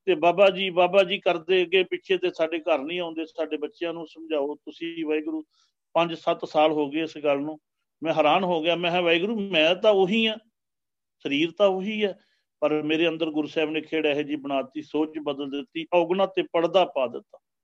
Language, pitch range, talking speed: Punjabi, 155-185 Hz, 200 wpm